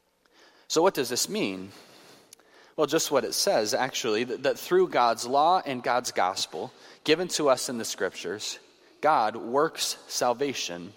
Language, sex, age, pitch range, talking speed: English, male, 30-49, 120-190 Hz, 155 wpm